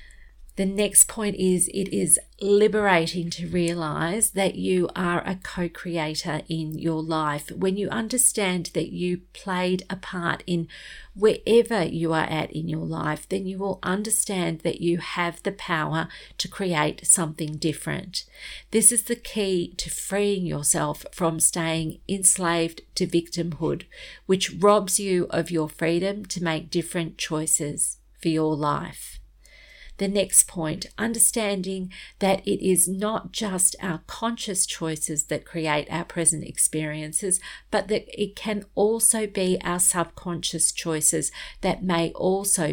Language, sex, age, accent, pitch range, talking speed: English, female, 40-59, Australian, 160-195 Hz, 140 wpm